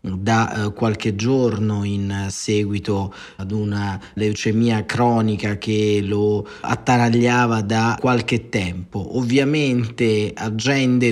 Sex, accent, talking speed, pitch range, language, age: male, native, 90 wpm, 110-130 Hz, Italian, 30-49